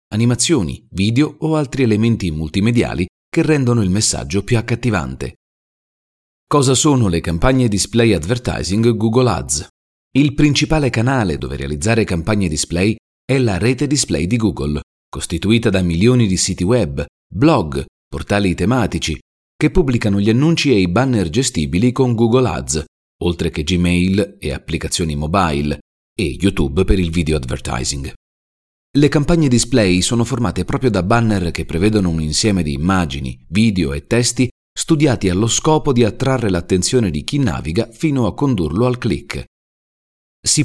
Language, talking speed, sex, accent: Italian, 145 wpm, male, native